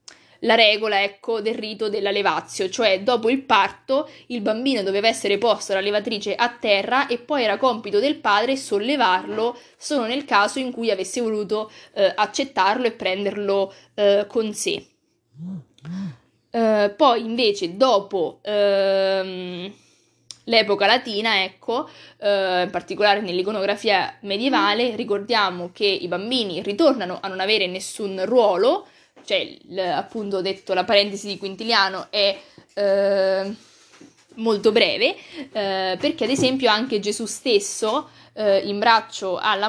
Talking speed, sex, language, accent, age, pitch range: 125 wpm, female, Italian, native, 20-39, 195-240 Hz